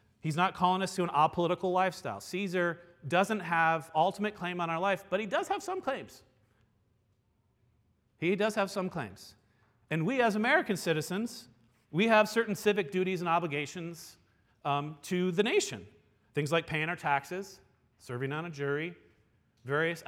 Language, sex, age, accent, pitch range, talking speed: English, male, 40-59, American, 115-185 Hz, 160 wpm